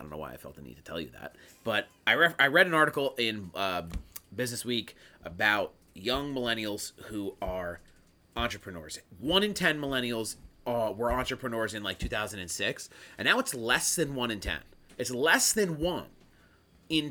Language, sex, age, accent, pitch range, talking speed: English, male, 30-49, American, 100-140 Hz, 180 wpm